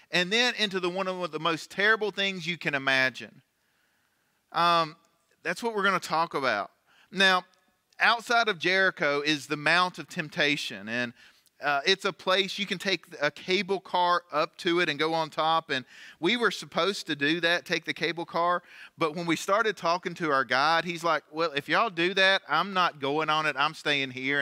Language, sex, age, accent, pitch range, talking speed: English, male, 40-59, American, 150-190 Hz, 200 wpm